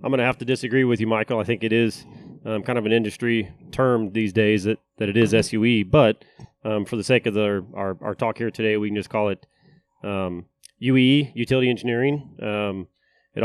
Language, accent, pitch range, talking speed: English, American, 105-125 Hz, 220 wpm